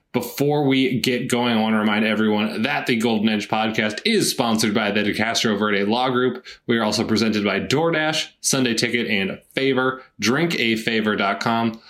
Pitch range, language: 105-130 Hz, English